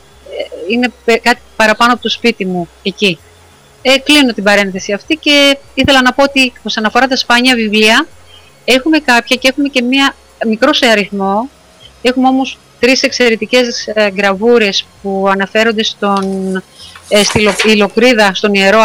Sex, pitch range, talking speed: female, 205-255 Hz, 145 wpm